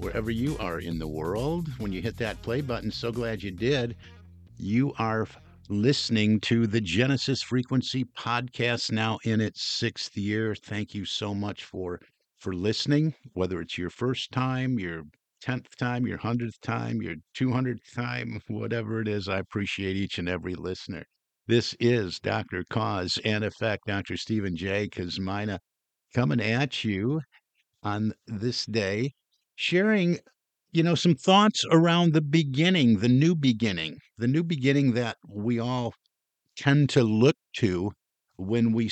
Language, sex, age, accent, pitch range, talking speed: English, male, 50-69, American, 100-125 Hz, 150 wpm